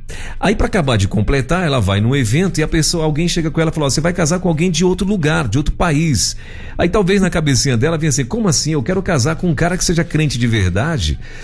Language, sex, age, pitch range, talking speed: Portuguese, male, 50-69, 110-160 Hz, 260 wpm